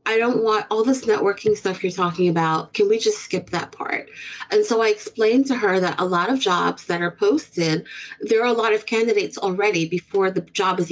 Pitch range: 180-245 Hz